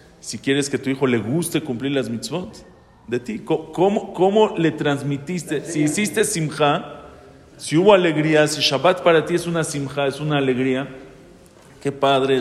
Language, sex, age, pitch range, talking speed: English, male, 40-59, 130-165 Hz, 170 wpm